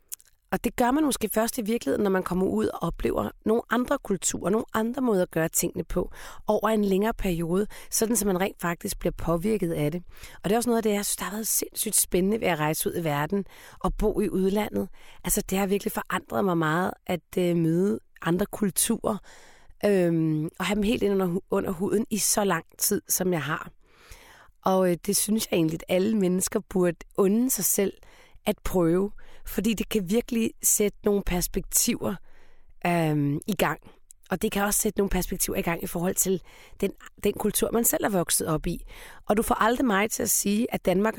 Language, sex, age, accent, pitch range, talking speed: Danish, female, 30-49, native, 180-220 Hz, 210 wpm